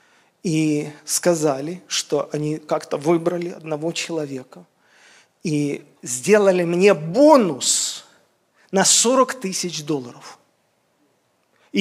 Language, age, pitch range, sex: Russian, 40-59, 150-190 Hz, male